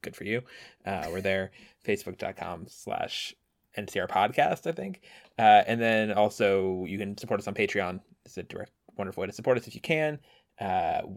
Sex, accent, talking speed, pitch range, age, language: male, American, 185 wpm, 100-155 Hz, 20-39, English